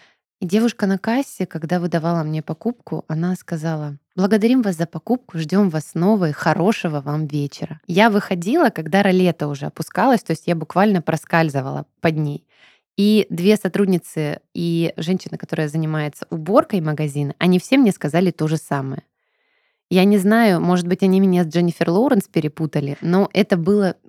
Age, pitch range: 20-39, 155-200 Hz